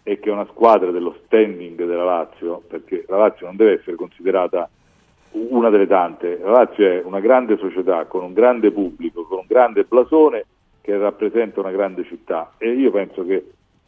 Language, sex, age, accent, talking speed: Italian, male, 40-59, native, 180 wpm